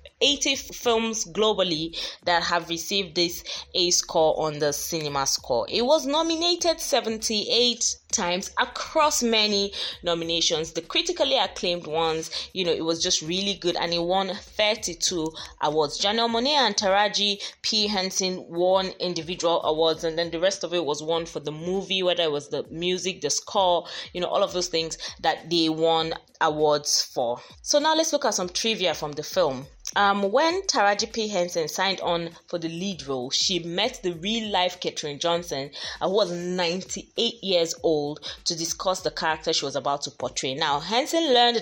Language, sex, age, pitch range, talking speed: English, female, 20-39, 165-215 Hz, 170 wpm